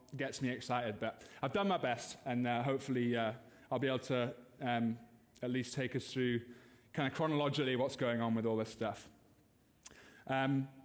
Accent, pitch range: British, 125-150 Hz